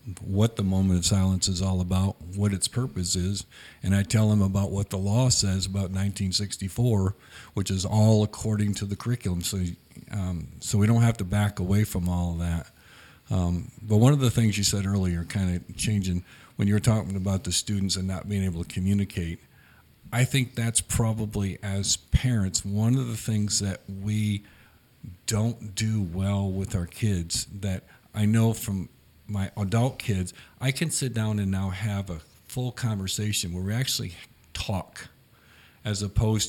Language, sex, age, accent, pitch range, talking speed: English, male, 50-69, American, 95-110 Hz, 180 wpm